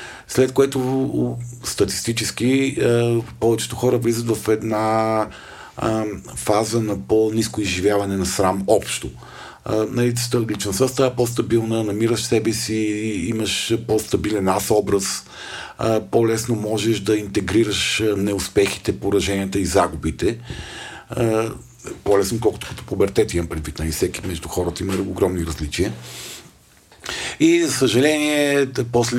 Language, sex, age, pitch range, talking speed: Bulgarian, male, 50-69, 95-115 Hz, 115 wpm